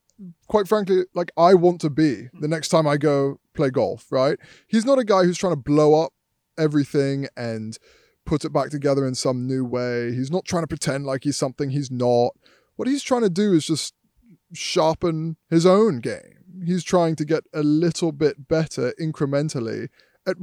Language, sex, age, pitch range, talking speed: English, male, 20-39, 140-180 Hz, 190 wpm